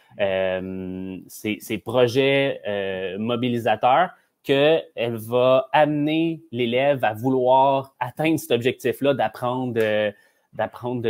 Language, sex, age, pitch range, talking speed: French, male, 30-49, 110-135 Hz, 95 wpm